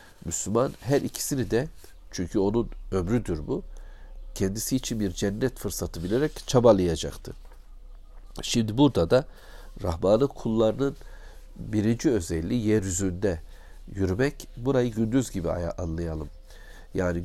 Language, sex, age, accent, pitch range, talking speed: Turkish, male, 60-79, native, 85-115 Hz, 110 wpm